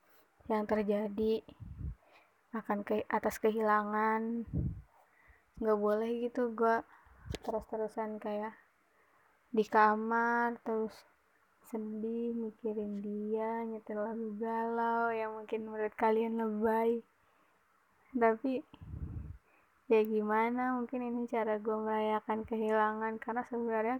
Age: 20-39